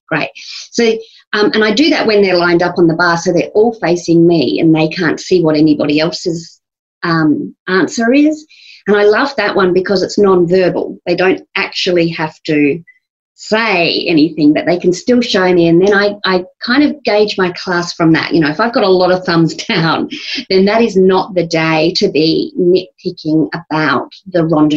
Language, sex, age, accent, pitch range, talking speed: English, female, 40-59, Australian, 165-210 Hz, 205 wpm